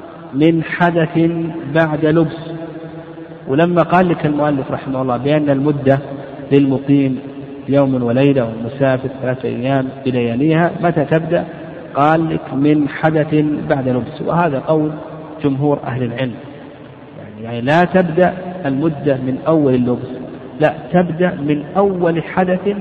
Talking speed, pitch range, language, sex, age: 115 wpm, 135-165 Hz, Arabic, male, 50-69